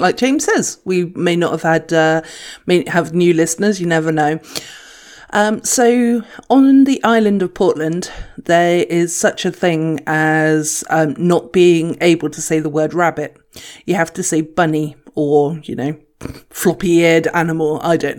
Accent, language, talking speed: British, English, 165 wpm